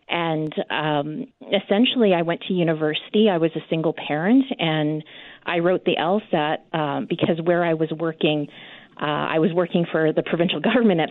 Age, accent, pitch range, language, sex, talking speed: 30-49, American, 155-190 Hz, English, female, 175 wpm